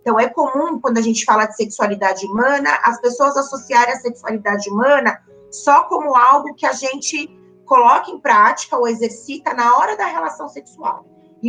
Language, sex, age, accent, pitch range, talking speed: Portuguese, female, 20-39, Brazilian, 210-275 Hz, 170 wpm